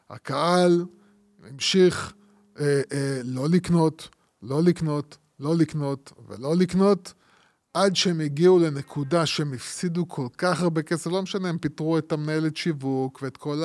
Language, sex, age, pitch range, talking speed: Hebrew, male, 20-39, 140-170 Hz, 130 wpm